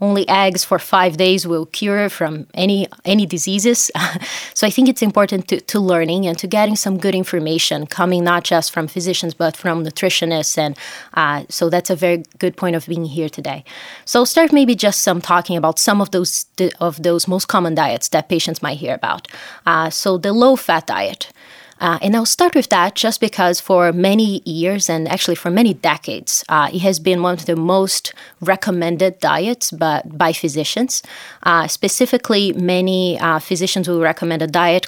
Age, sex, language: 20-39, female, English